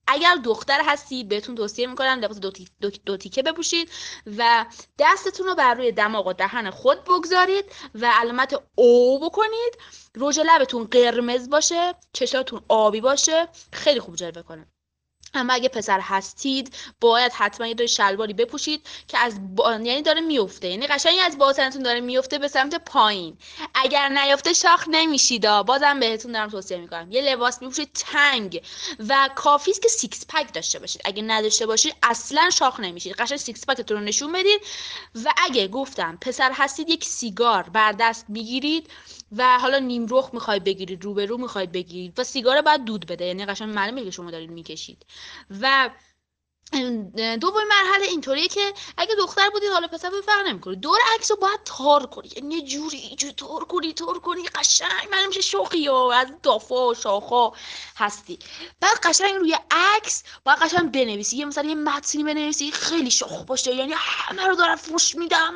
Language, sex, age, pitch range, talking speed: Persian, female, 20-39, 225-325 Hz, 170 wpm